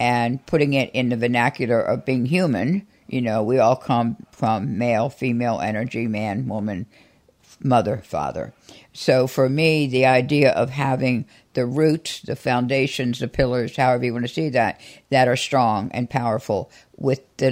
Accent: American